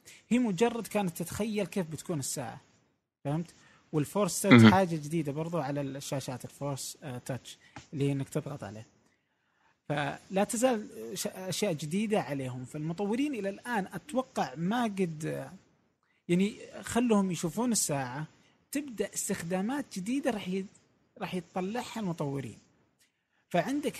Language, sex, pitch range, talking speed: Arabic, male, 150-205 Hz, 115 wpm